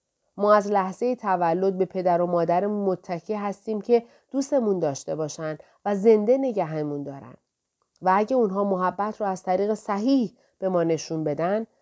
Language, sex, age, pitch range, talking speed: Persian, female, 40-59, 165-220 Hz, 155 wpm